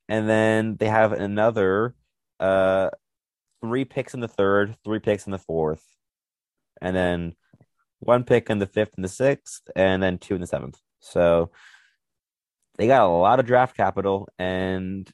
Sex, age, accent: male, 30-49, American